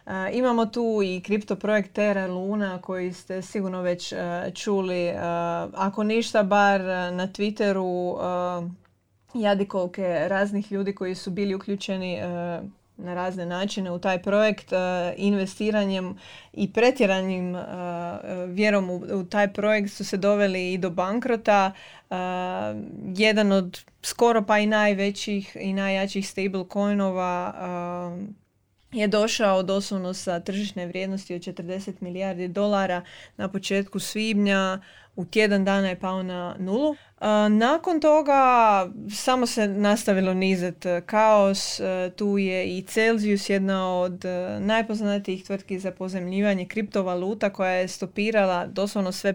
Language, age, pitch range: Croatian, 20-39, 185-210 Hz